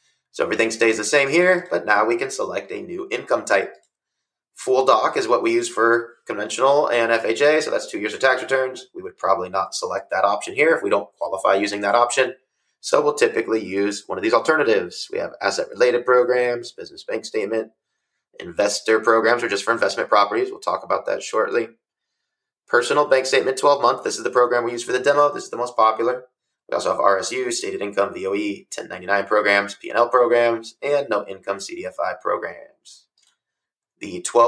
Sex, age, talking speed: male, 30-49, 195 wpm